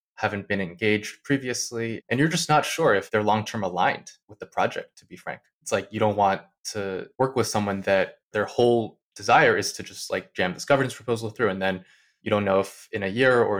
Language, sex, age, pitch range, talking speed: English, male, 20-39, 100-125 Hz, 225 wpm